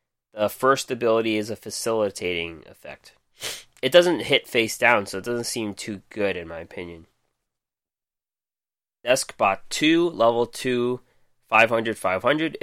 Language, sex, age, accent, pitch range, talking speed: English, male, 20-39, American, 105-125 Hz, 125 wpm